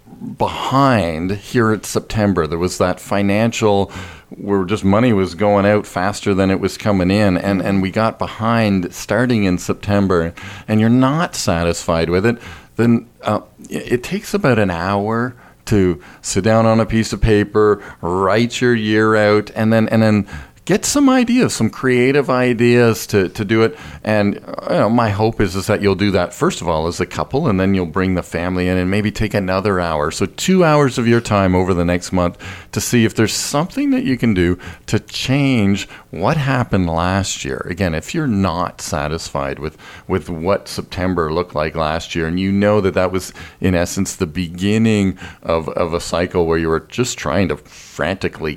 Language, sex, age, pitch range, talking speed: English, male, 40-59, 90-115 Hz, 190 wpm